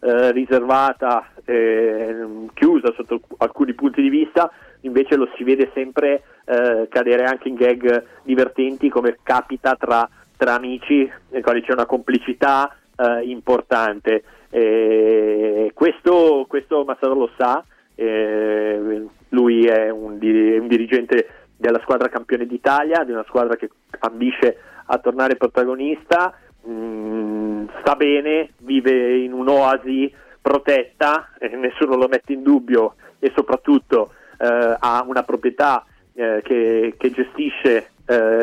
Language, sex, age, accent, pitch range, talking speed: Italian, male, 30-49, native, 120-140 Hz, 125 wpm